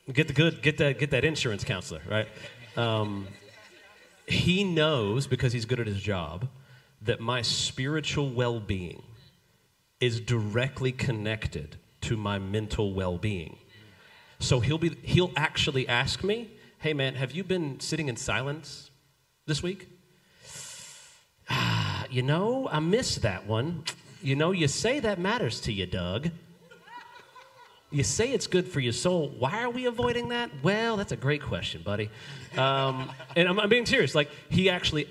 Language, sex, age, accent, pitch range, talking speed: English, male, 40-59, American, 115-155 Hz, 155 wpm